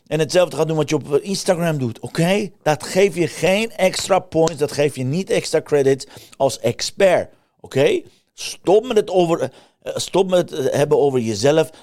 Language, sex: Dutch, male